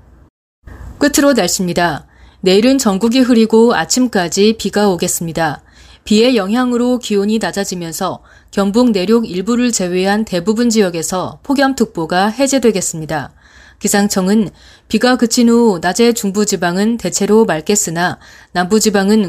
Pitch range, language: 175-235 Hz, Korean